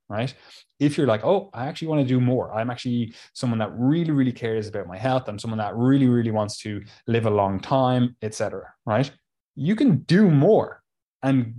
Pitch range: 105-130 Hz